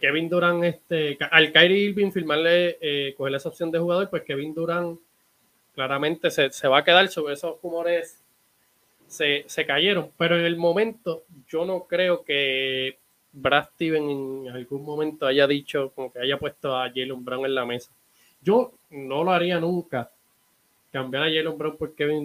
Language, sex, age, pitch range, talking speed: Spanish, male, 20-39, 140-170 Hz, 175 wpm